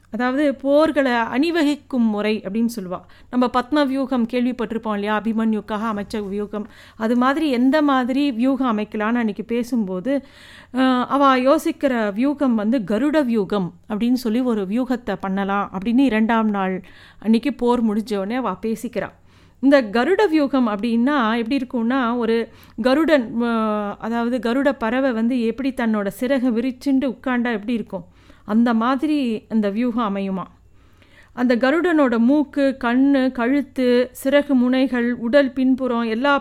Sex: female